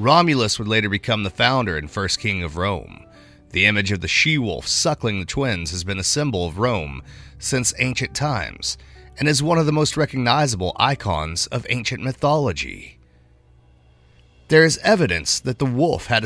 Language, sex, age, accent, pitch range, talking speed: English, male, 30-49, American, 95-140 Hz, 170 wpm